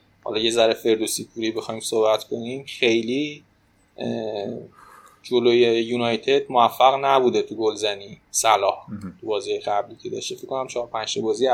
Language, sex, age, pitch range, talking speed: Persian, male, 20-39, 110-135 Hz, 135 wpm